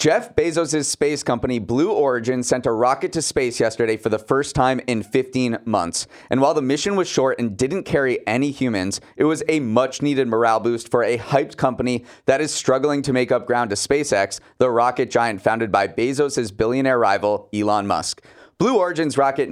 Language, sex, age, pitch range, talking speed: English, male, 30-49, 115-145 Hz, 190 wpm